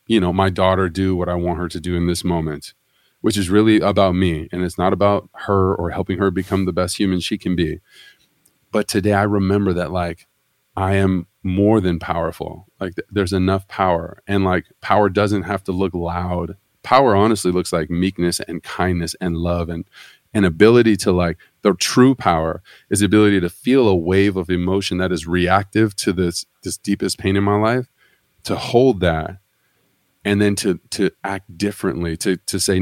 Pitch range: 90-105 Hz